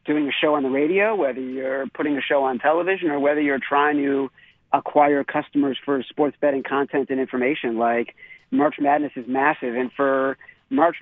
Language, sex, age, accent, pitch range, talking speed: English, male, 50-69, American, 135-155 Hz, 185 wpm